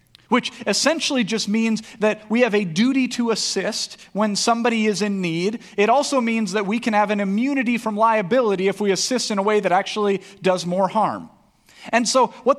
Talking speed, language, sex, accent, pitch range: 195 wpm, English, male, American, 195-245 Hz